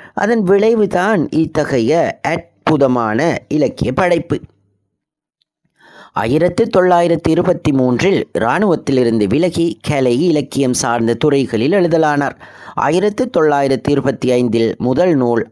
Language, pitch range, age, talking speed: Tamil, 120-170 Hz, 20-39, 80 wpm